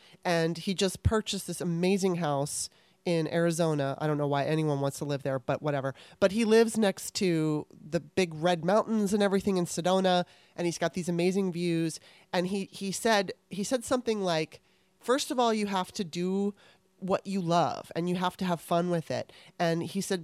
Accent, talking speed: American, 200 wpm